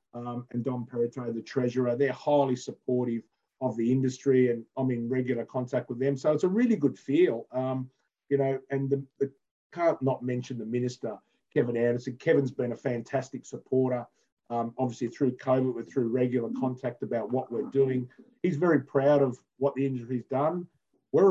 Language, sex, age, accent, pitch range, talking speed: English, male, 40-59, Australian, 120-140 Hz, 175 wpm